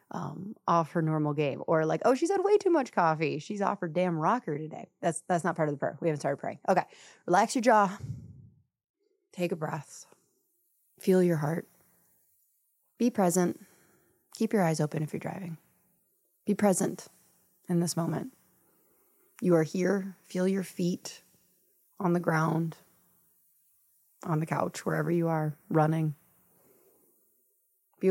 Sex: female